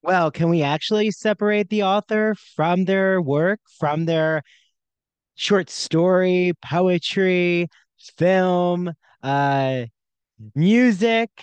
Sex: male